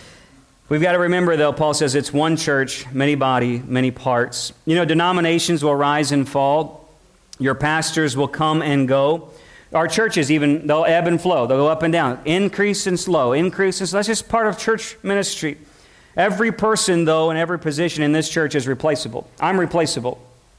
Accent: American